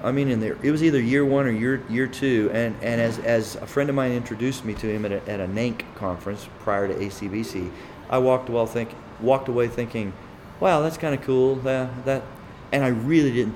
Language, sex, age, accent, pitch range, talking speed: English, male, 40-59, American, 105-130 Hz, 230 wpm